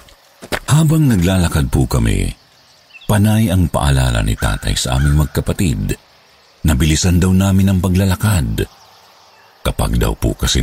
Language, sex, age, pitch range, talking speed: Filipino, male, 50-69, 80-110 Hz, 125 wpm